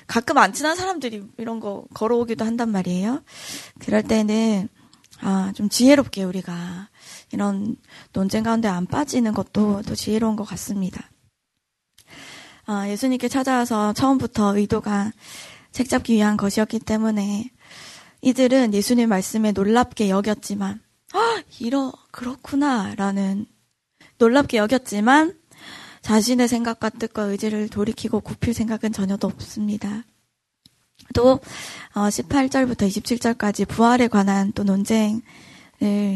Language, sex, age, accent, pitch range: Korean, female, 20-39, native, 205-245 Hz